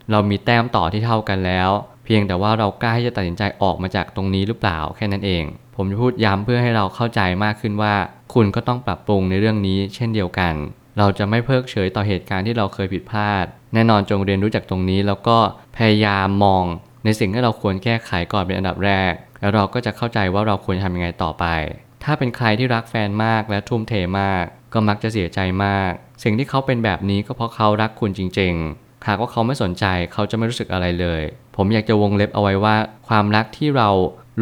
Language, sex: Thai, male